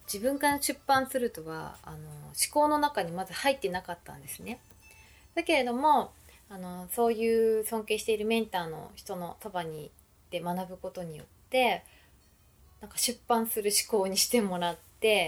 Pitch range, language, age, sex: 165-230 Hz, Japanese, 20-39, female